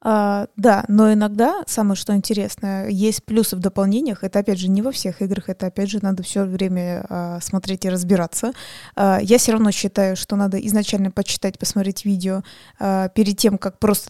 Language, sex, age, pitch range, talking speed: Russian, female, 20-39, 195-220 Hz, 185 wpm